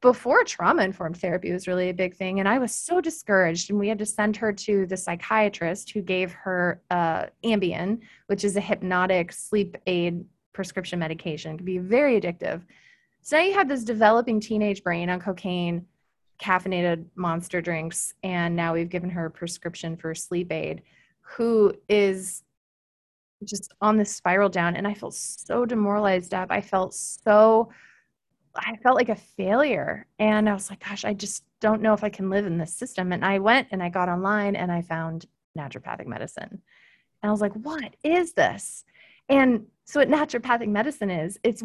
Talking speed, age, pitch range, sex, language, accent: 180 wpm, 20-39, 180-220 Hz, female, English, American